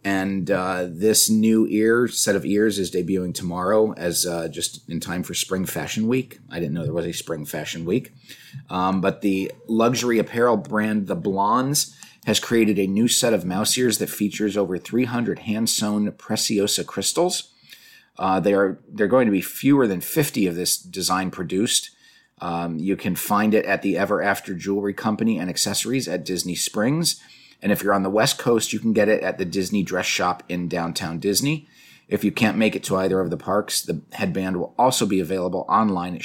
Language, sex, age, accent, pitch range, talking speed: English, male, 30-49, American, 95-110 Hz, 195 wpm